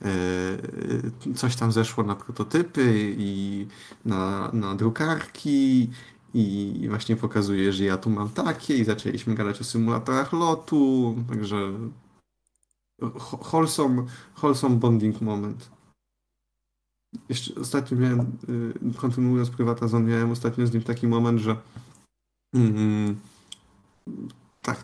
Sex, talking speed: male, 100 wpm